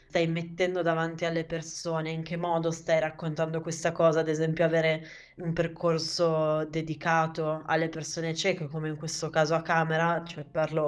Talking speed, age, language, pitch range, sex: 160 wpm, 20-39, Italian, 155-170 Hz, female